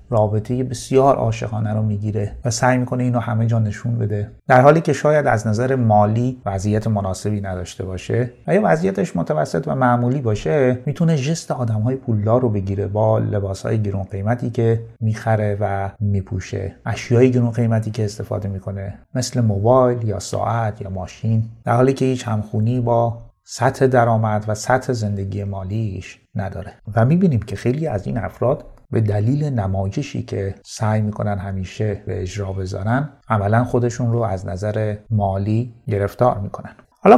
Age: 30-49